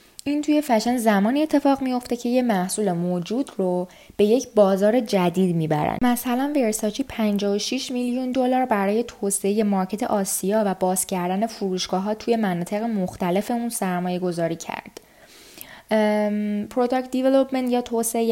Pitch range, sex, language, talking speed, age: 180-230 Hz, female, Persian, 130 wpm, 10-29